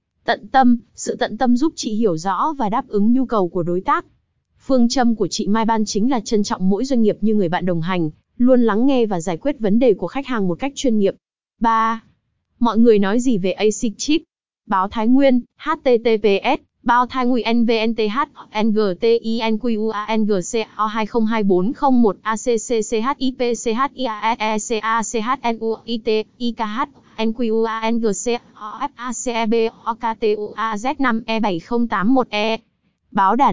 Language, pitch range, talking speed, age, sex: Vietnamese, 215-250 Hz, 140 wpm, 20-39, female